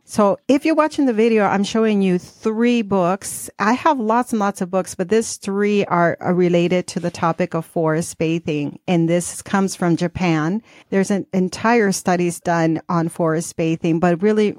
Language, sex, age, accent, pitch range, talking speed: English, female, 40-59, American, 170-200 Hz, 180 wpm